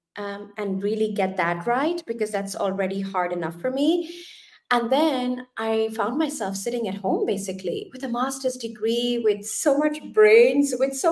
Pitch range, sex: 200-260 Hz, female